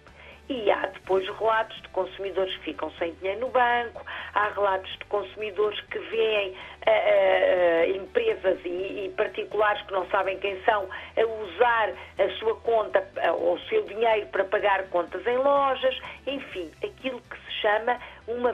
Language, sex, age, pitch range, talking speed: Portuguese, female, 50-69, 195-285 Hz, 150 wpm